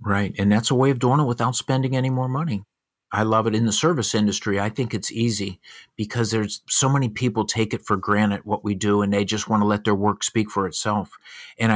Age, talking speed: 50-69, 245 wpm